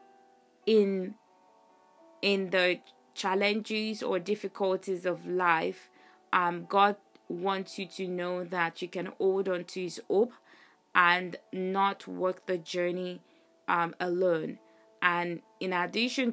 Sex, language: female, English